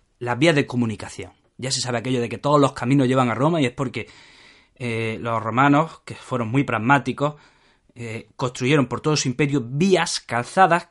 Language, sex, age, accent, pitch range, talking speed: Spanish, male, 20-39, Spanish, 125-175 Hz, 185 wpm